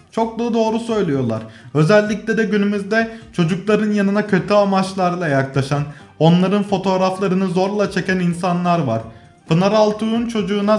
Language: Turkish